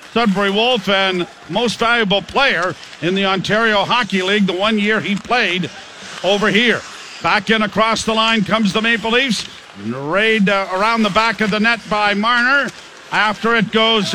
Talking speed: 170 wpm